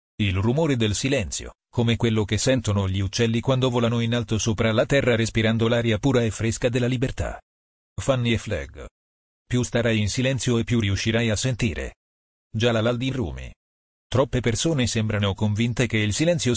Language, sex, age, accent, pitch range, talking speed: Italian, male, 40-59, native, 95-120 Hz, 175 wpm